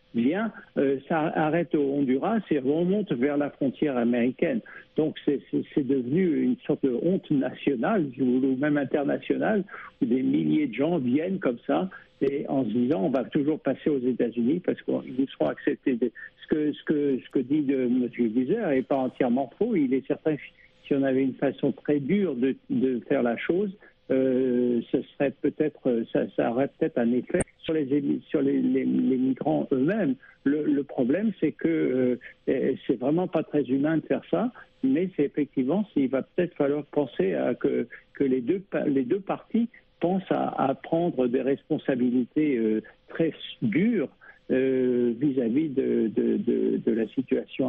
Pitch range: 130-160 Hz